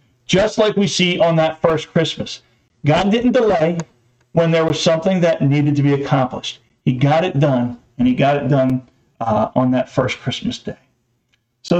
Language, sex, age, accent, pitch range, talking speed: English, male, 40-59, American, 130-190 Hz, 185 wpm